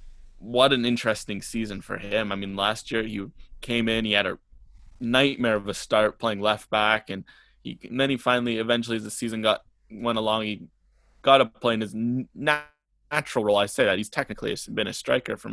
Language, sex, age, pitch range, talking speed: English, male, 20-39, 105-120 Hz, 210 wpm